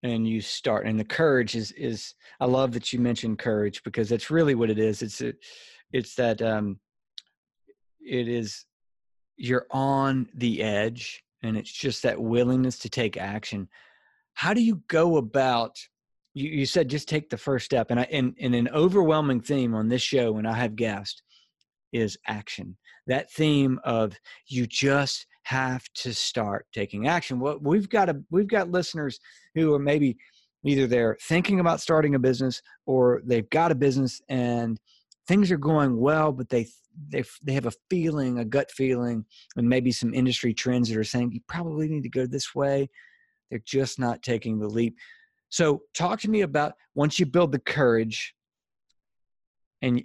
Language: English